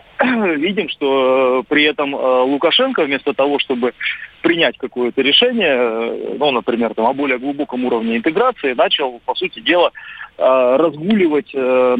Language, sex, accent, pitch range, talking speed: Russian, male, native, 135-190 Hz, 120 wpm